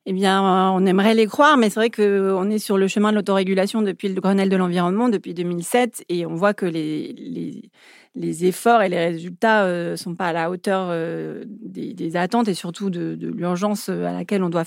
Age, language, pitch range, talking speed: 40-59, French, 180-215 Hz, 215 wpm